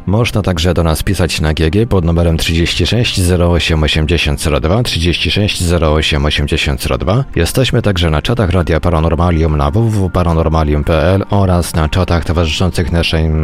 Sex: male